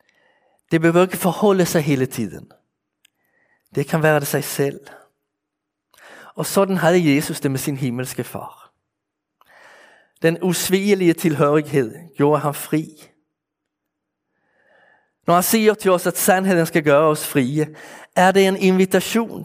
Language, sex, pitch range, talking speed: Danish, male, 140-180 Hz, 135 wpm